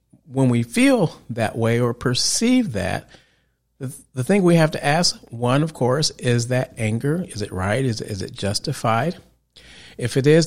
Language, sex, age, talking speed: English, male, 40-59, 185 wpm